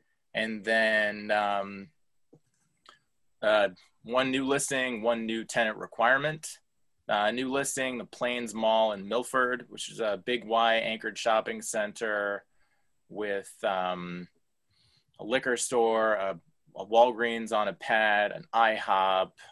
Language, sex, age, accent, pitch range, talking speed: English, male, 20-39, American, 100-120 Hz, 125 wpm